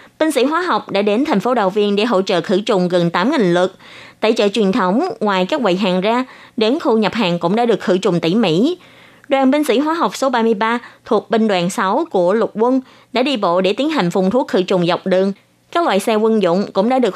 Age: 20-39